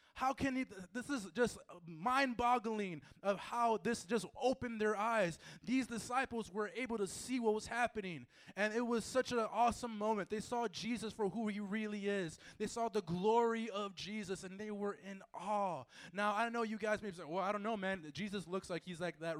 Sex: male